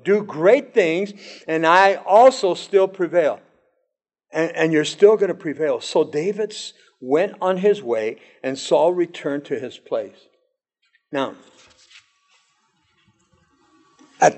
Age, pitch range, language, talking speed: 60-79, 175-280 Hz, English, 120 wpm